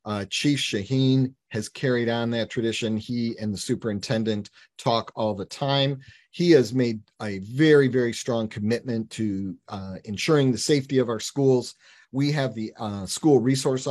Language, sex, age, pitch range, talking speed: Arabic, male, 40-59, 110-135 Hz, 165 wpm